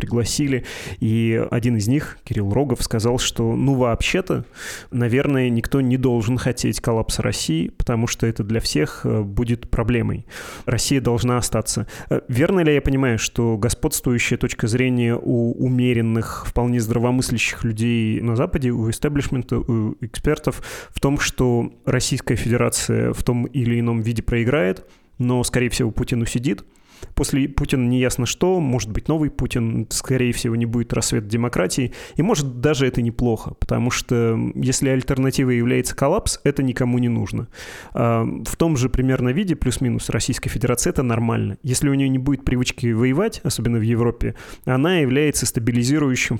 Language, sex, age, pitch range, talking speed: Russian, male, 20-39, 115-130 Hz, 150 wpm